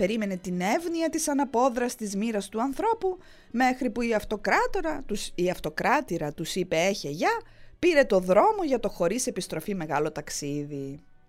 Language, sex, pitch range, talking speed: English, female, 180-285 Hz, 145 wpm